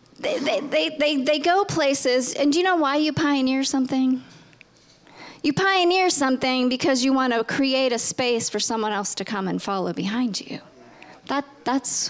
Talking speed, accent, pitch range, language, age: 180 wpm, American, 210-275 Hz, English, 40-59